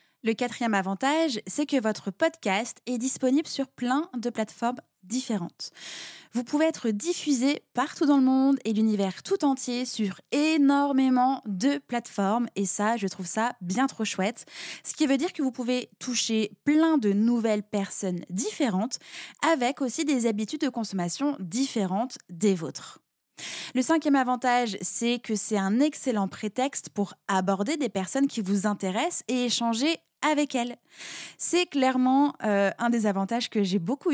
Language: French